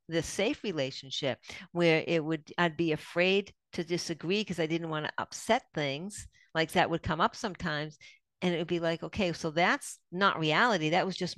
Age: 50-69